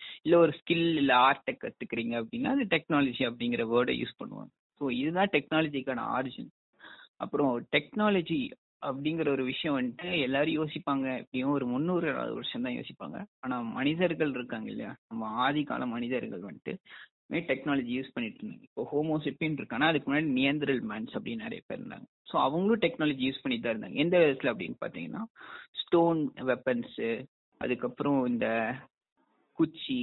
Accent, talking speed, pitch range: native, 140 wpm, 130-175 Hz